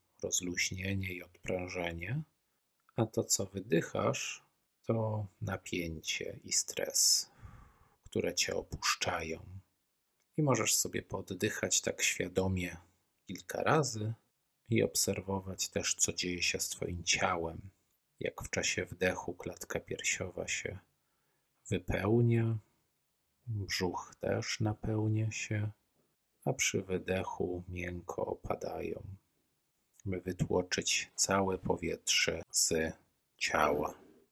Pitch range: 85-100 Hz